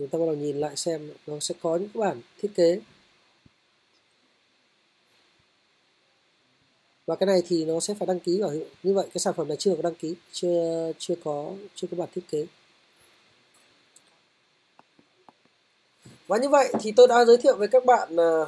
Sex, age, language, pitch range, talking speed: female, 20-39, Vietnamese, 170-215 Hz, 170 wpm